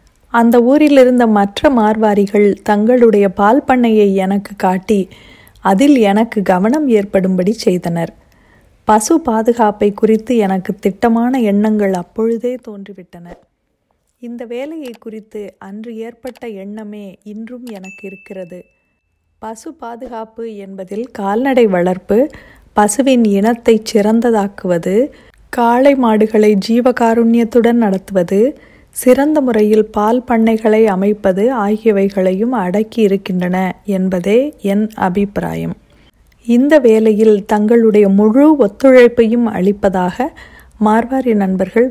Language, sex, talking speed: Tamil, female, 85 wpm